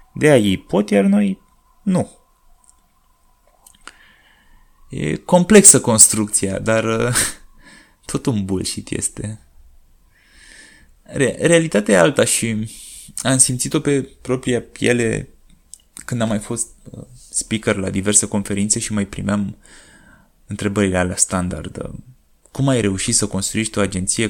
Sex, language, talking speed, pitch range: male, Romanian, 110 wpm, 105-140 Hz